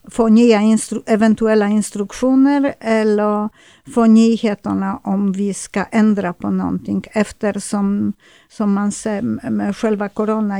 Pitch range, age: 200-225 Hz, 50-69